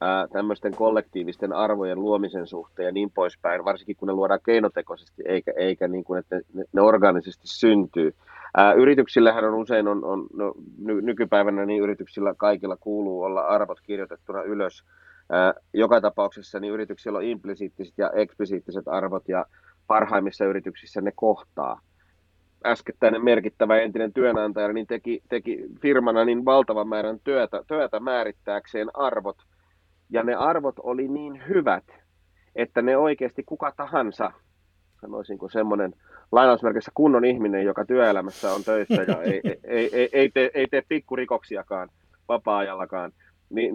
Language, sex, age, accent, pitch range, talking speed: Finnish, male, 30-49, native, 95-125 Hz, 135 wpm